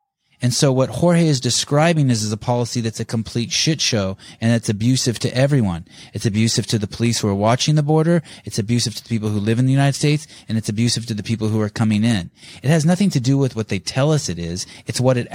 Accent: American